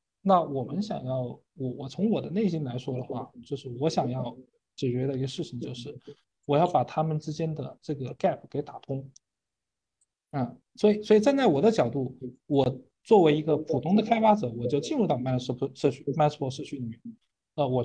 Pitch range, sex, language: 125-180 Hz, male, Chinese